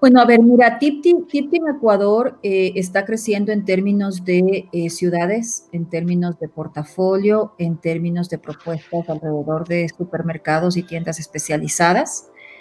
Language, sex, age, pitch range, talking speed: Spanish, female, 40-59, 170-205 Hz, 135 wpm